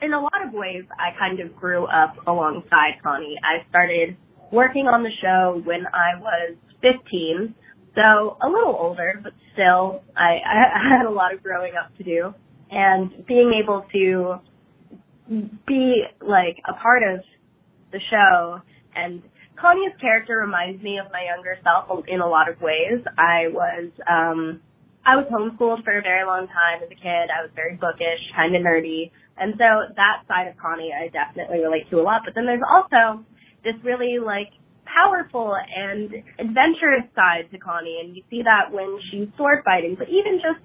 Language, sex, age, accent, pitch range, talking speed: English, female, 20-39, American, 175-230 Hz, 175 wpm